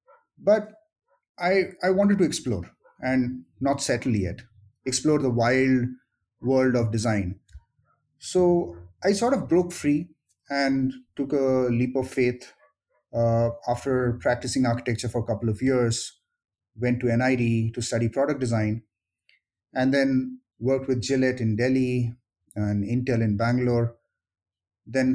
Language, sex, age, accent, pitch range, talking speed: English, male, 30-49, Indian, 110-135 Hz, 135 wpm